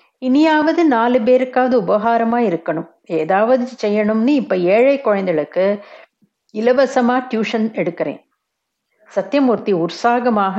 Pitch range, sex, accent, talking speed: 190-245 Hz, female, native, 90 wpm